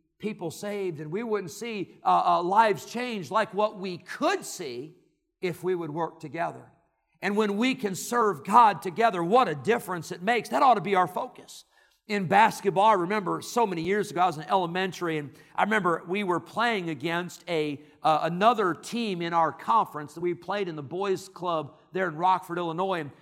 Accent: American